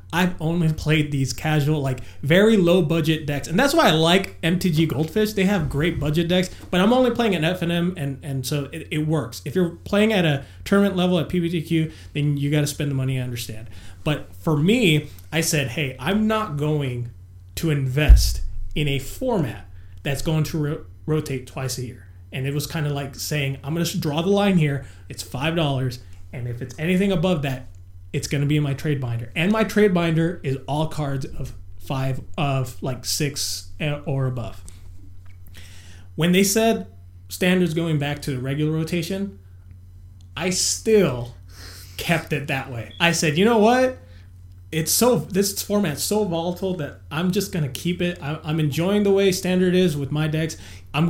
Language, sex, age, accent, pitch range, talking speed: English, male, 20-39, American, 130-180 Hz, 190 wpm